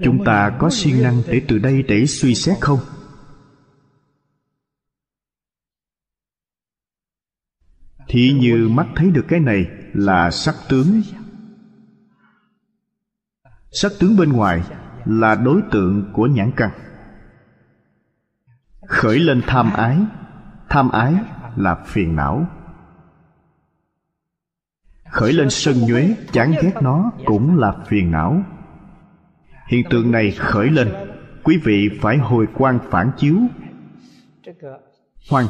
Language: Vietnamese